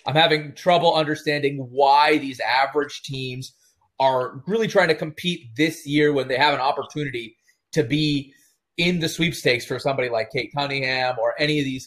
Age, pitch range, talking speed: 30-49, 140-175 Hz, 170 wpm